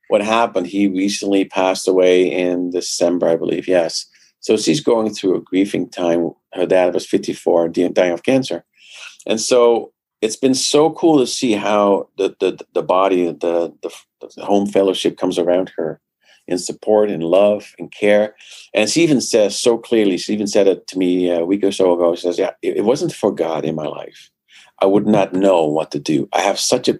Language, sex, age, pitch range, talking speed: English, male, 50-69, 90-110 Hz, 200 wpm